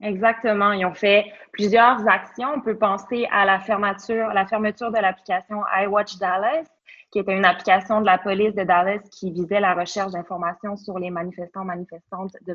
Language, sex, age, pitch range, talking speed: French, female, 20-39, 185-215 Hz, 170 wpm